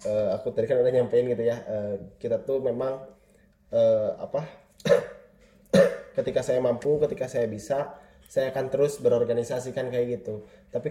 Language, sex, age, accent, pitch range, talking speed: Indonesian, male, 20-39, native, 115-135 Hz, 145 wpm